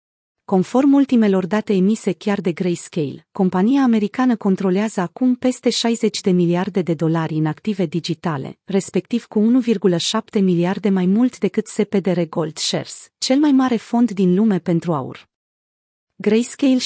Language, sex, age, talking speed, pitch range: Romanian, female, 30-49, 140 wpm, 180-225 Hz